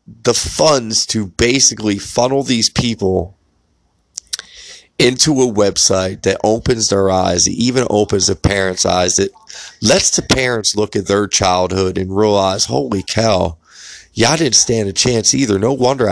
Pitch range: 85-115 Hz